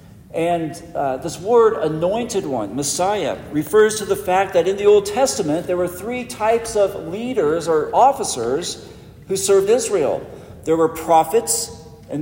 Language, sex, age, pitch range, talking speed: English, male, 50-69, 160-205 Hz, 150 wpm